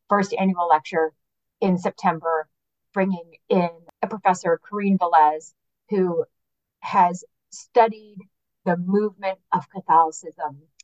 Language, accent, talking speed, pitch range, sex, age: English, American, 100 wpm, 165-210 Hz, female, 30-49